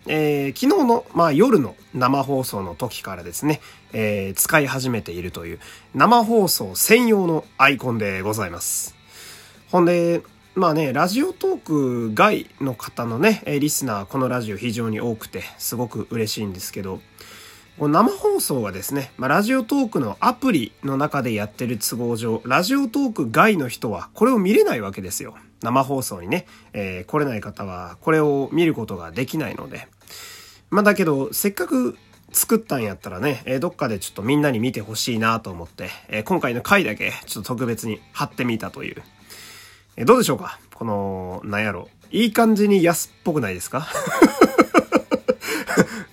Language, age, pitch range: Japanese, 30-49, 105-160 Hz